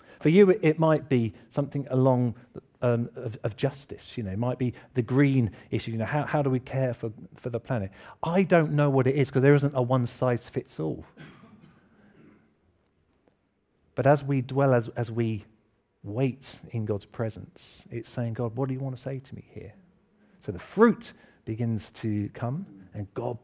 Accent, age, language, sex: British, 40-59, English, male